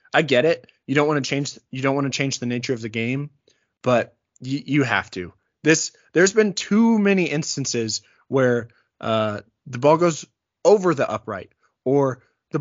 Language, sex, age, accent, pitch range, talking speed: English, male, 20-39, American, 115-150 Hz, 180 wpm